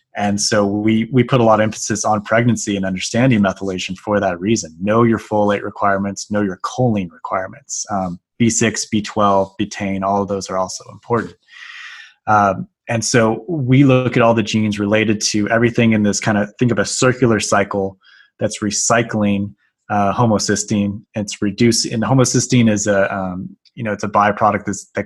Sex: male